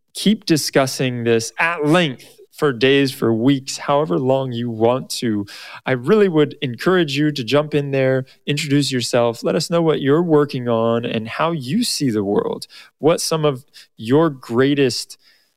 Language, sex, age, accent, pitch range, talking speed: English, male, 20-39, American, 115-150 Hz, 165 wpm